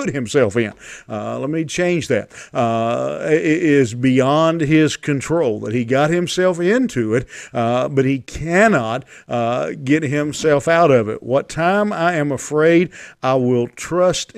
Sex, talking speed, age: male, 155 wpm, 50-69